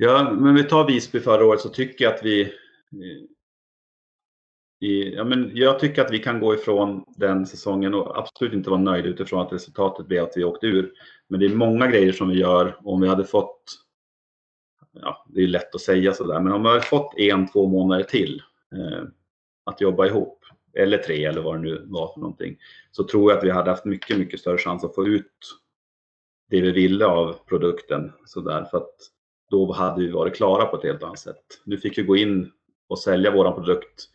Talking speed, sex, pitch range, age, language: 210 wpm, male, 90-105 Hz, 30-49, Swedish